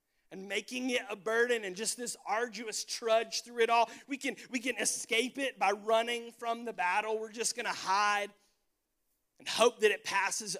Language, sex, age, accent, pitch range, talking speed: English, male, 40-59, American, 230-275 Hz, 185 wpm